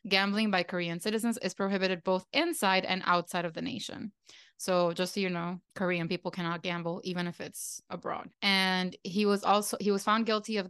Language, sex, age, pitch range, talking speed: English, female, 20-39, 175-195 Hz, 195 wpm